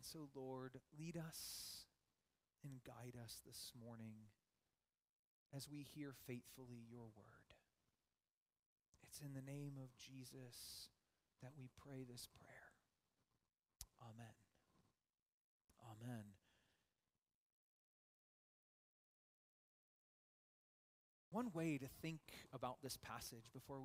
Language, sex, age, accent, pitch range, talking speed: English, male, 30-49, American, 120-190 Hz, 95 wpm